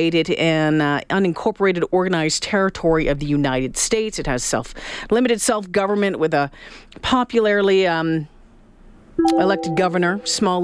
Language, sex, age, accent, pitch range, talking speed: English, female, 40-59, American, 160-225 Hz, 120 wpm